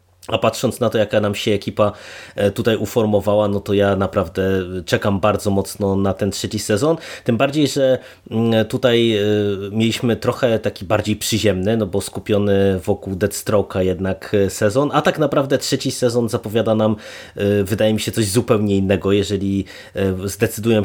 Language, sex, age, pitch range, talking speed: Polish, male, 20-39, 100-115 Hz, 150 wpm